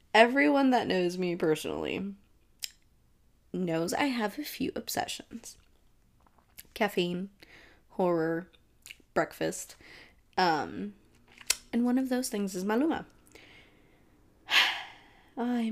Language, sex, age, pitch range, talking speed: English, female, 20-39, 210-315 Hz, 90 wpm